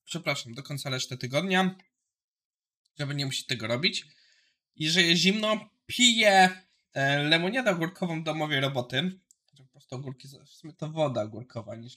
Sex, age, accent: male, 20-39, native